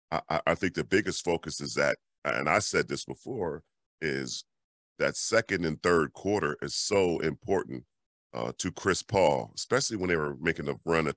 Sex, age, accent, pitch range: male, 40-59, American, 70-85 Hz